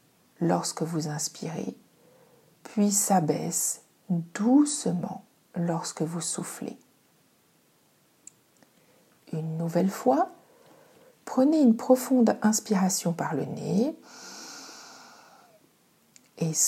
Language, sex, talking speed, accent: French, female, 70 wpm, French